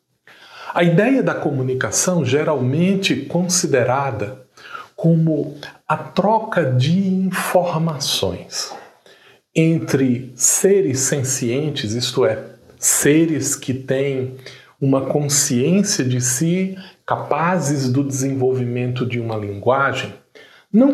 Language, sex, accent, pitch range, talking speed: Portuguese, male, Brazilian, 130-175 Hz, 85 wpm